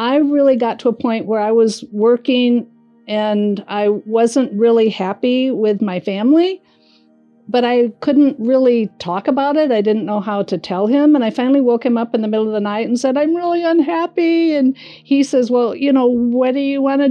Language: English